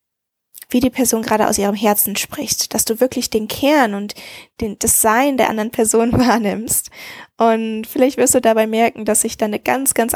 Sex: female